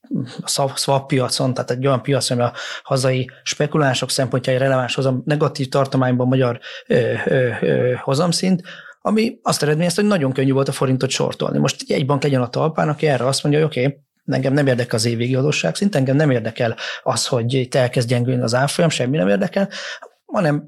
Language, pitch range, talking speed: Hungarian, 125-150 Hz, 185 wpm